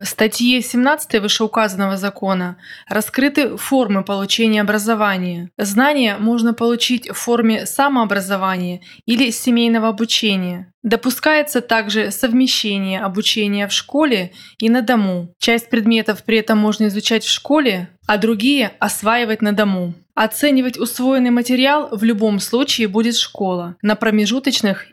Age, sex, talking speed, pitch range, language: 20-39, female, 120 wpm, 205-250 Hz, Russian